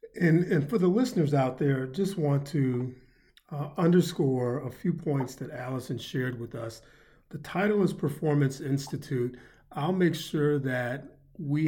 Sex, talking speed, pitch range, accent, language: male, 155 wpm, 125-155 Hz, American, English